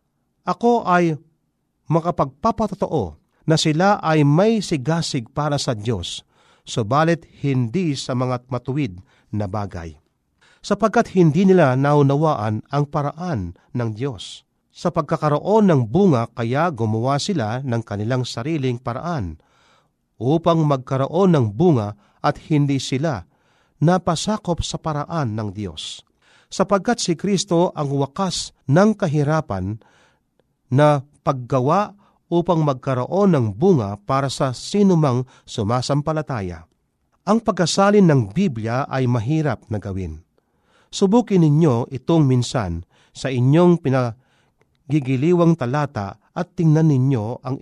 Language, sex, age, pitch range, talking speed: Filipino, male, 50-69, 125-170 Hz, 110 wpm